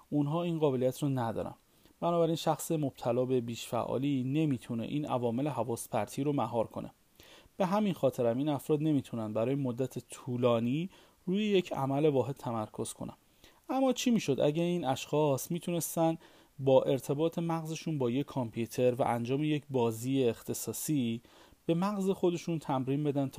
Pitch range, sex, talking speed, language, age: 125-165 Hz, male, 145 wpm, Persian, 30-49